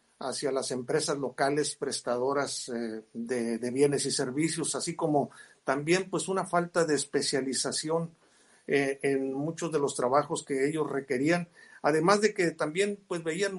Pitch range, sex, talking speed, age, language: 140-175 Hz, male, 140 wpm, 50-69, Spanish